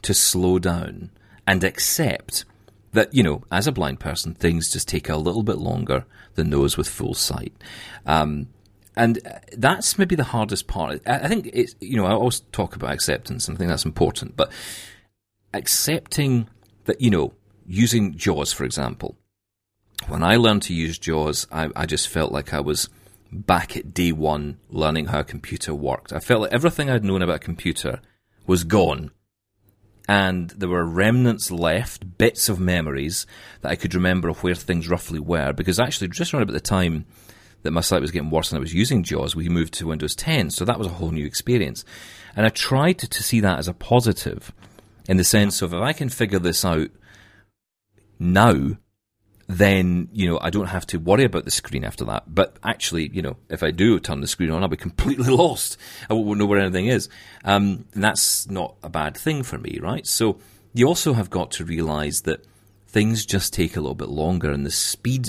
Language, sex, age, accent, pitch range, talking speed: English, male, 40-59, British, 85-110 Hz, 200 wpm